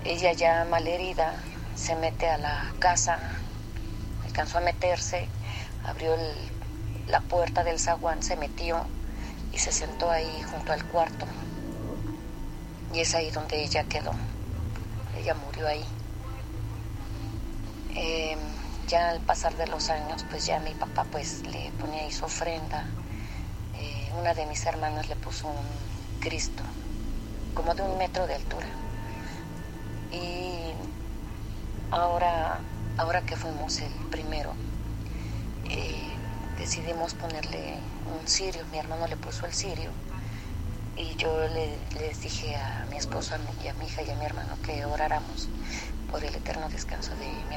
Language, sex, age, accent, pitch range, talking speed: Spanish, female, 30-49, Mexican, 105-155 Hz, 140 wpm